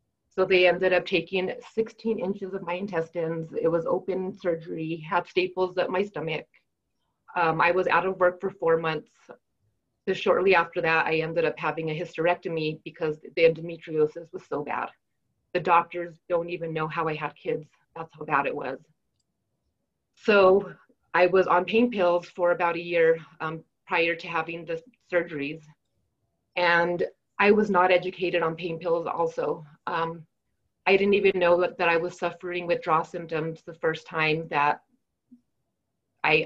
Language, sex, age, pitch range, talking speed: English, female, 30-49, 160-180 Hz, 165 wpm